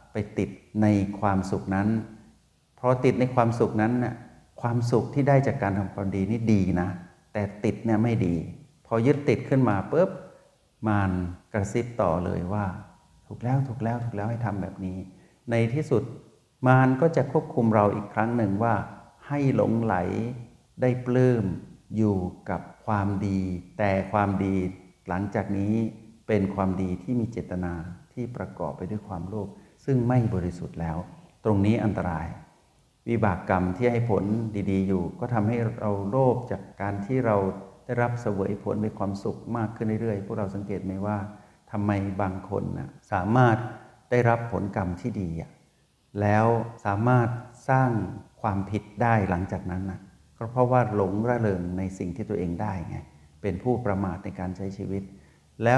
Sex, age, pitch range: male, 60-79, 95-115 Hz